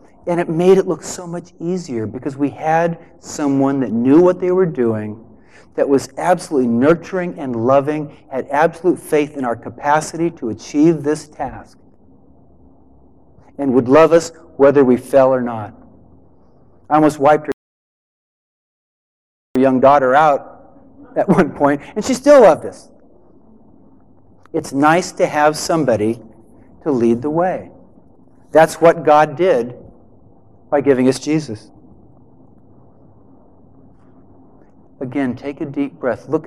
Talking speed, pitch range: 135 wpm, 115-155 Hz